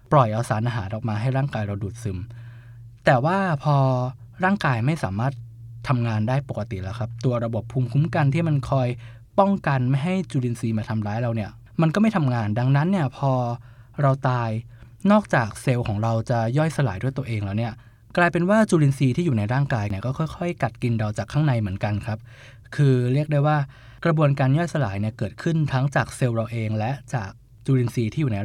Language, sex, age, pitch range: Thai, male, 20-39, 115-140 Hz